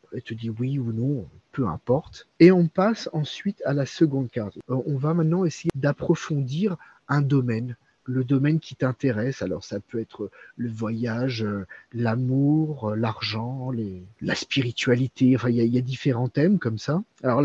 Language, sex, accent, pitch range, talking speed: French, male, French, 125-160 Hz, 170 wpm